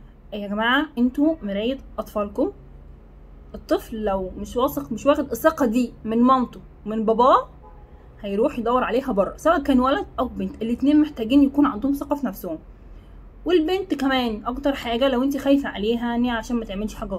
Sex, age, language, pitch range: female, 20-39, Arabic, 205-265 Hz